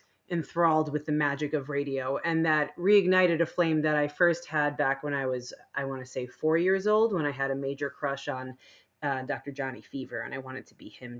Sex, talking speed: female, 230 wpm